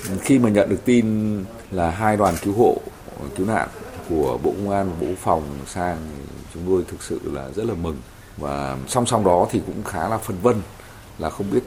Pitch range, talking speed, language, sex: 85-110 Hz, 210 wpm, Vietnamese, male